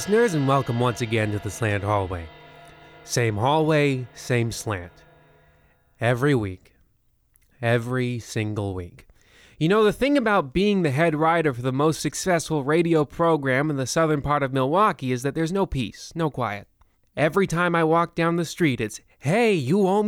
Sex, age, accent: male, 20-39, American